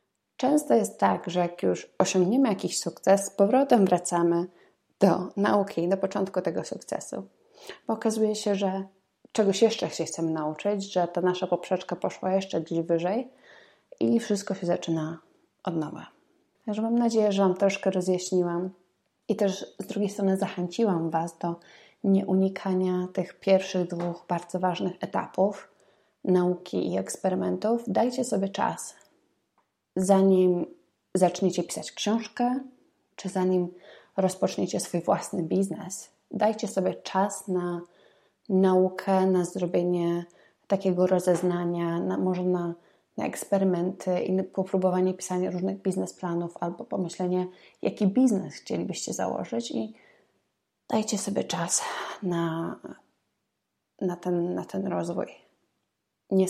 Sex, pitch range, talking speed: female, 175-200 Hz, 120 wpm